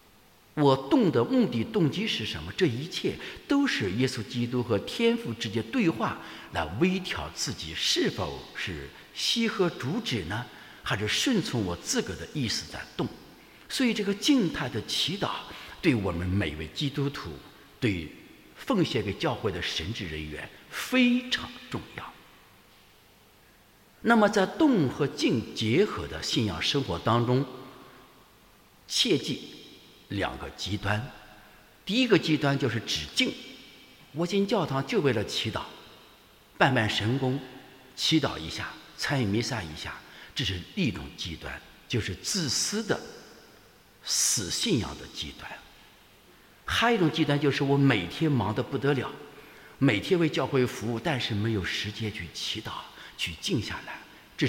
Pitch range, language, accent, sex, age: 100-155 Hz, English, Chinese, male, 60-79